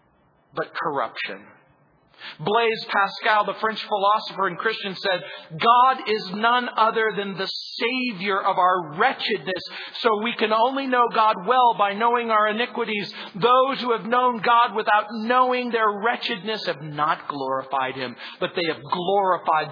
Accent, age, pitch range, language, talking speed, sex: American, 50-69, 160-235 Hz, English, 145 wpm, male